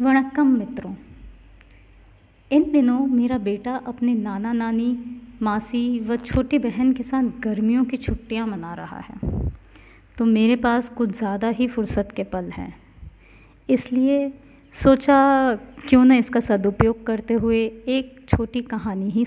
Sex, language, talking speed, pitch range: female, Hindi, 135 wpm, 220-270 Hz